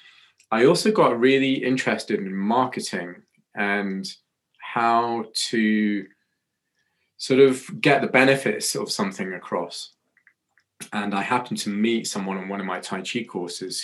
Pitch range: 95-125 Hz